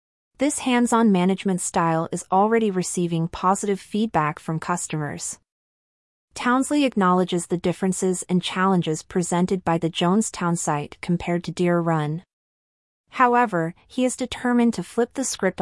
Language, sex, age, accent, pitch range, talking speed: English, female, 30-49, American, 170-205 Hz, 130 wpm